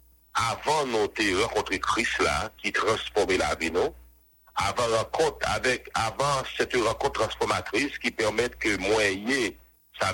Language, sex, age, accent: English, male, 60-79, French